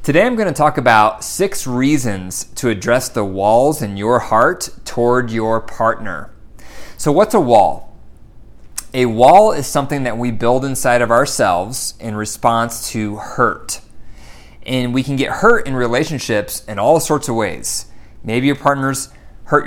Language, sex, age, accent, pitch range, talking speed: English, male, 30-49, American, 115-140 Hz, 155 wpm